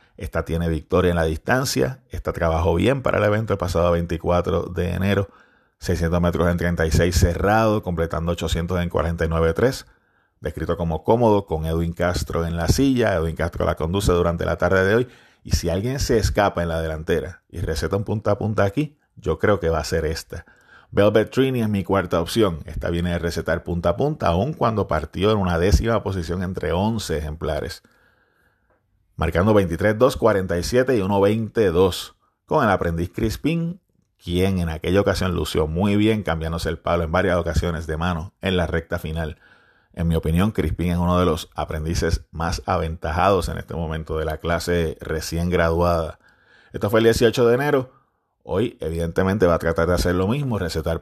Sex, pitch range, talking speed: male, 85-100 Hz, 180 wpm